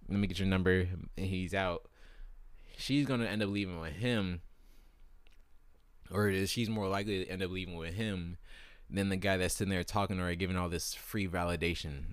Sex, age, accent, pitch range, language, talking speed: male, 20-39, American, 80-100 Hz, English, 200 wpm